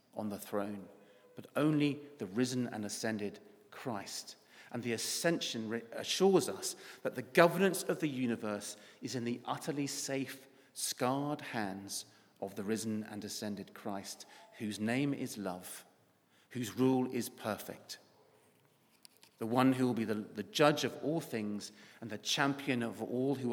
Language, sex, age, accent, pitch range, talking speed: English, male, 40-59, British, 110-155 Hz, 150 wpm